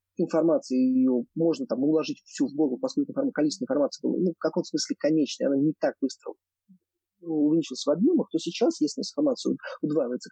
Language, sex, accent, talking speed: Russian, male, native, 170 wpm